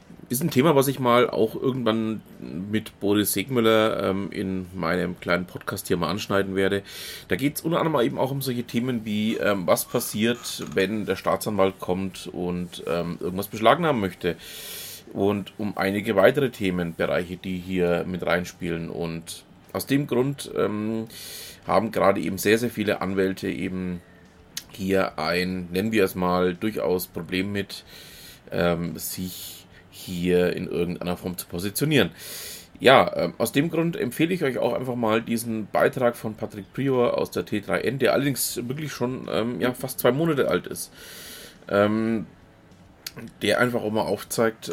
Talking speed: 160 wpm